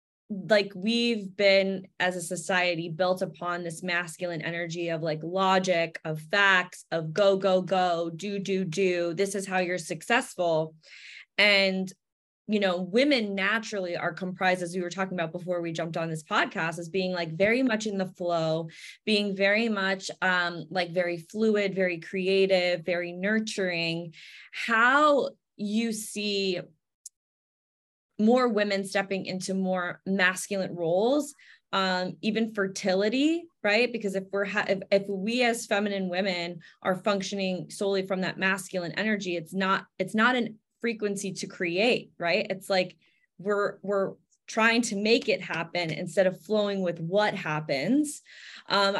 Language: English